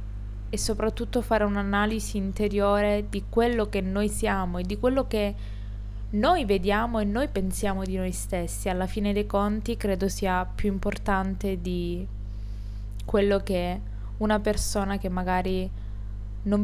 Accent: native